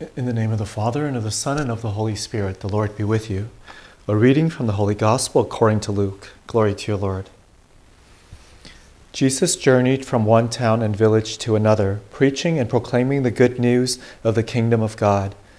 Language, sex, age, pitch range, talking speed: English, male, 40-59, 105-125 Hz, 205 wpm